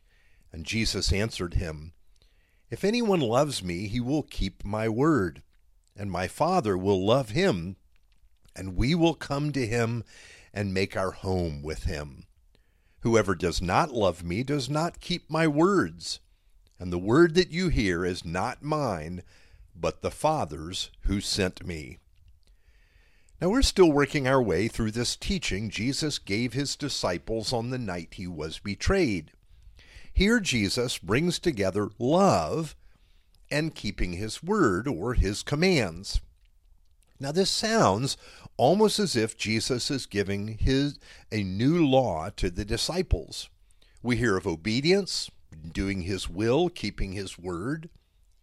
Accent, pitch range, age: American, 90-140 Hz, 50-69